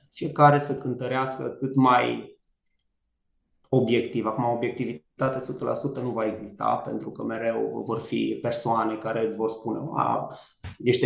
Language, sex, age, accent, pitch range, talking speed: Romanian, male, 20-39, native, 115-145 Hz, 130 wpm